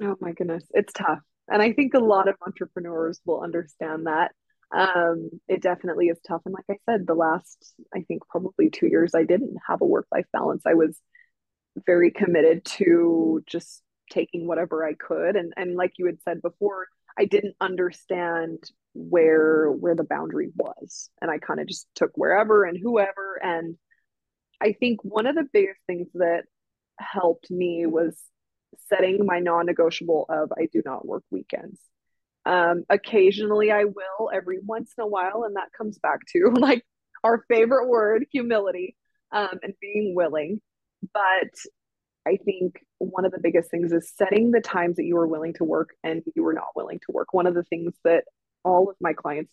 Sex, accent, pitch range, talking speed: female, American, 170-215 Hz, 180 wpm